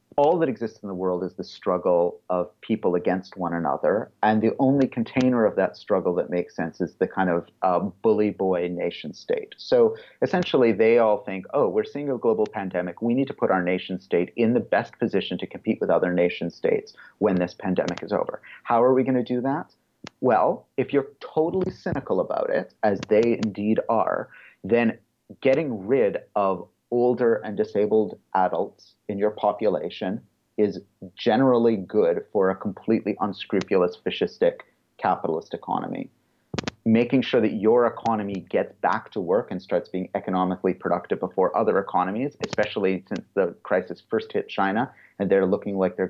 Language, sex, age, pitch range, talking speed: English, male, 30-49, 95-130 Hz, 175 wpm